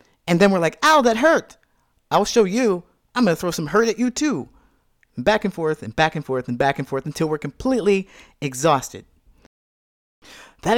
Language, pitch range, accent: English, 140-215 Hz, American